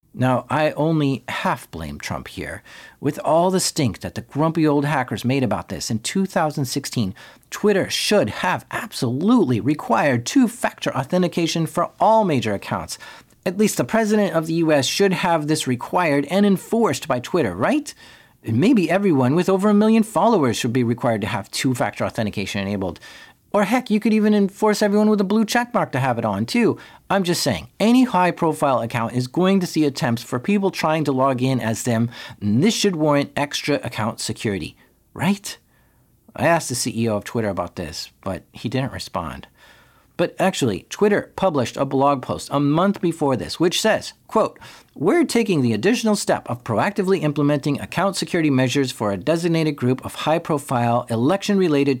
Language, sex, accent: English, male, American